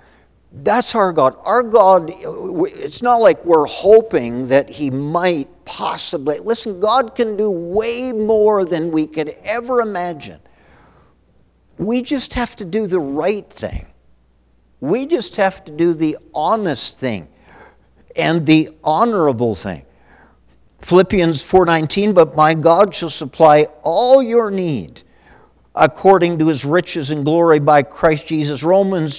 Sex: male